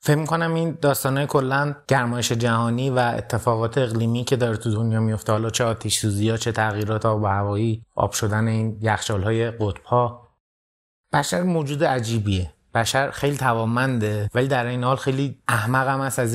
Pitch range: 115-140 Hz